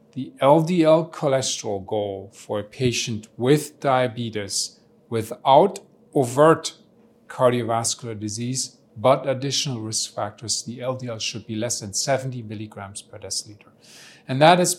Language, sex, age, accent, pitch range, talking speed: English, male, 40-59, German, 110-135 Hz, 120 wpm